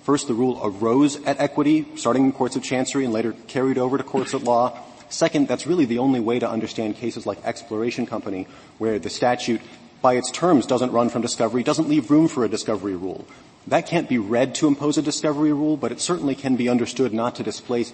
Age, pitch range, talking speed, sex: 30-49, 115-140 Hz, 220 wpm, male